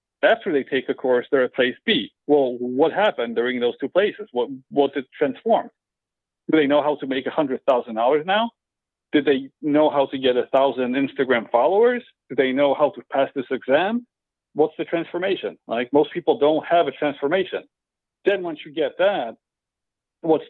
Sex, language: male, English